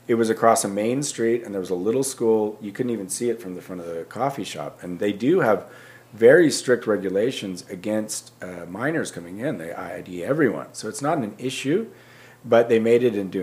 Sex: male